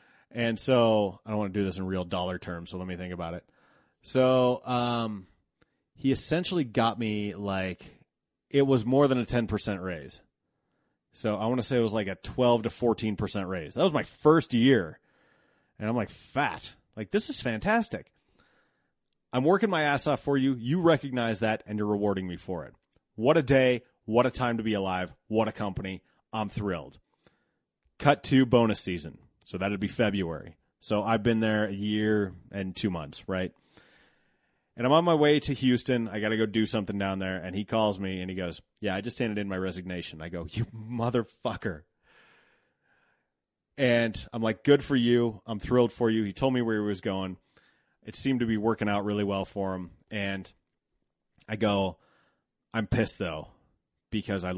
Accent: American